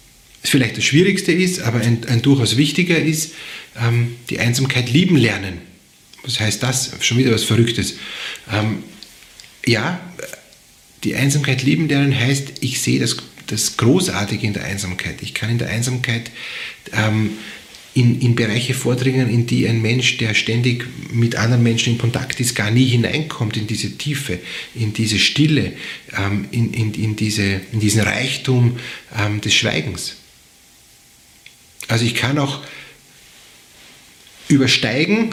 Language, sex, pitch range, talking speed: German, male, 115-140 Hz, 145 wpm